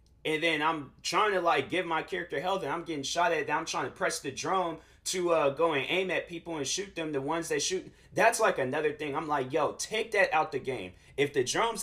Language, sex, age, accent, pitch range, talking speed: English, male, 30-49, American, 135-180 Hz, 260 wpm